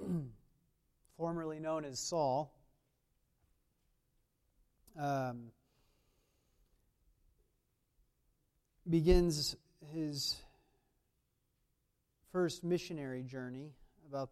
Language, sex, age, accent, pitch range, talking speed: English, male, 40-59, American, 130-170 Hz, 45 wpm